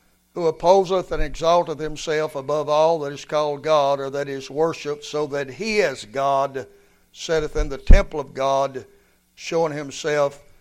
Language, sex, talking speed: English, male, 160 wpm